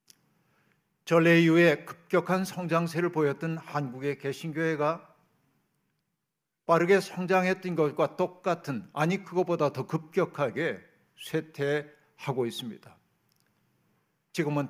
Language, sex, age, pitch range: Korean, male, 50-69, 145-175 Hz